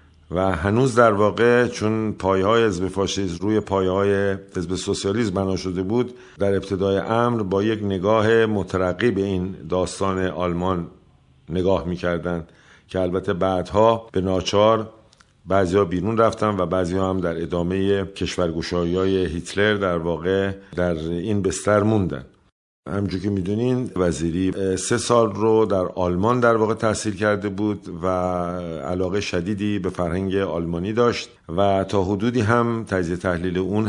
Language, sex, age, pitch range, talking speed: Persian, male, 50-69, 95-110 Hz, 140 wpm